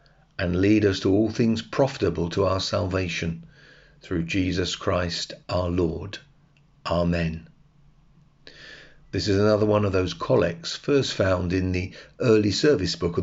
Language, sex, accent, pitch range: English, male, British, 90-135 Hz